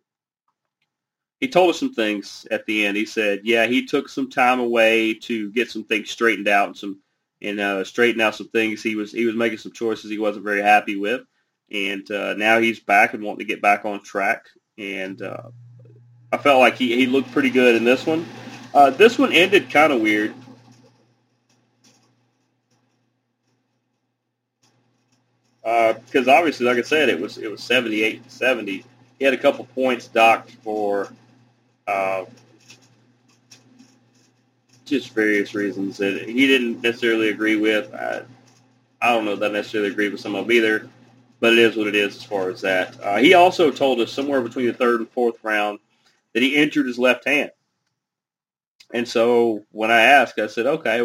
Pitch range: 110-125 Hz